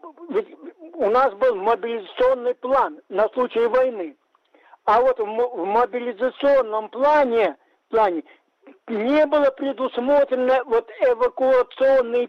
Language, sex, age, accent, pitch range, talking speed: Russian, male, 50-69, native, 235-395 Hz, 100 wpm